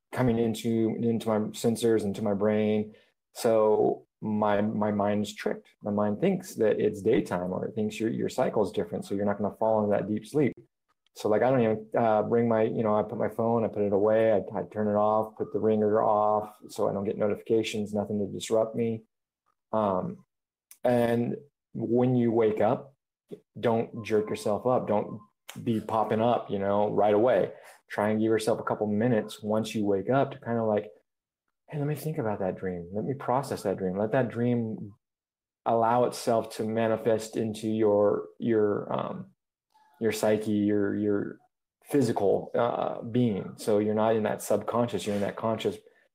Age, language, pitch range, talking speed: 30-49, English, 105-115 Hz, 190 wpm